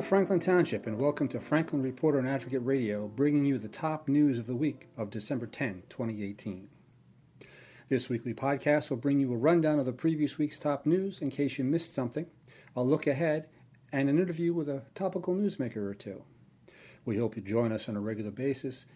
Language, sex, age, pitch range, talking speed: English, male, 40-59, 120-150 Hz, 195 wpm